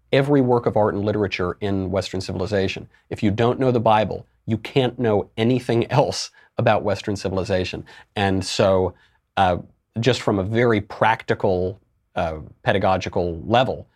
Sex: male